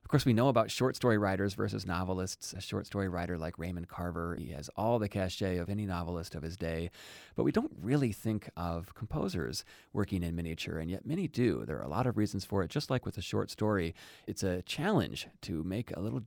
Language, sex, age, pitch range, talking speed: English, male, 30-49, 85-110 Hz, 230 wpm